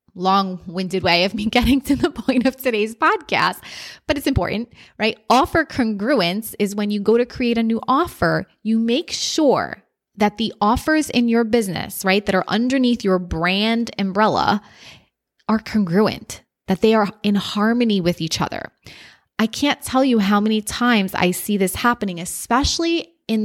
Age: 20-39